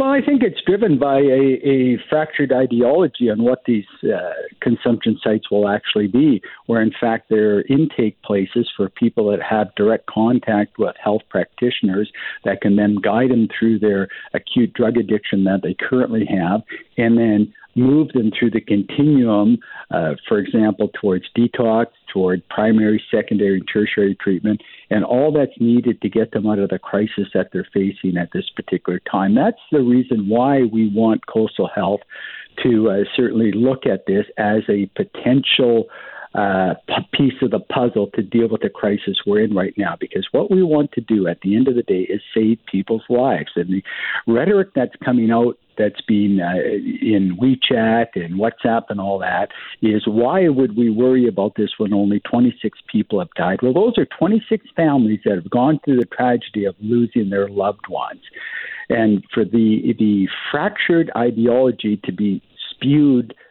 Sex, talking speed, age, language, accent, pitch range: male, 175 wpm, 60-79, English, American, 105-125 Hz